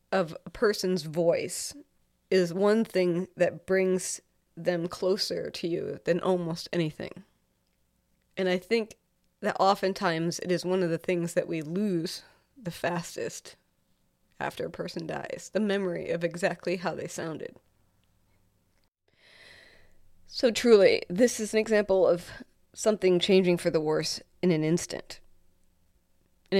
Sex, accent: female, American